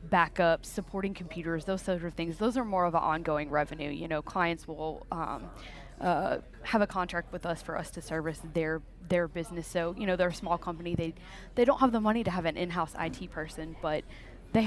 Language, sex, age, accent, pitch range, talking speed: English, female, 20-39, American, 165-195 Hz, 215 wpm